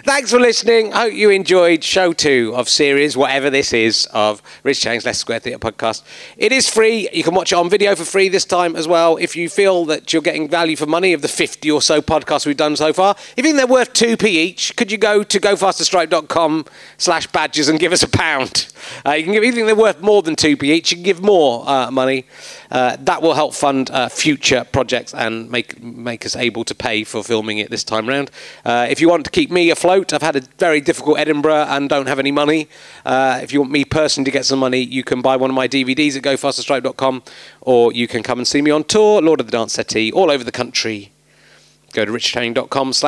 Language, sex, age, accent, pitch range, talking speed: English, male, 40-59, British, 130-195 Hz, 240 wpm